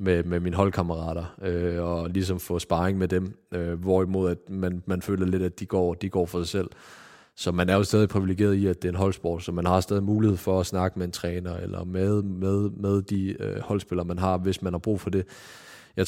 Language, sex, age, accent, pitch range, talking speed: English, male, 20-39, Danish, 90-100 Hz, 245 wpm